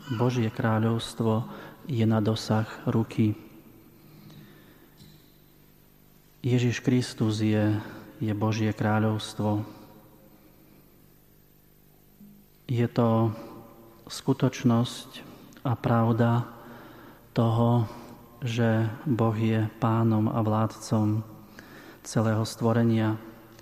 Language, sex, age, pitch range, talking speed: Slovak, male, 30-49, 110-120 Hz, 65 wpm